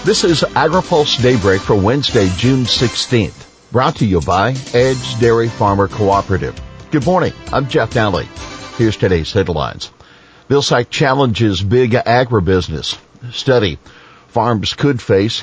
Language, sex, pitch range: English, male, 100-125 Hz